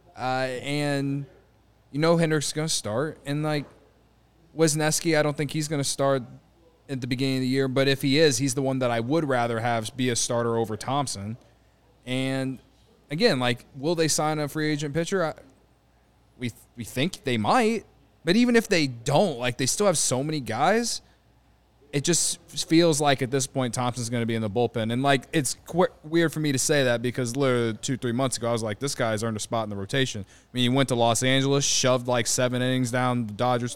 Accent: American